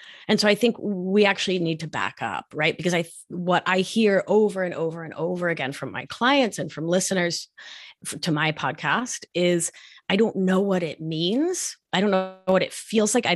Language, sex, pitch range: English, female, 165-215 Hz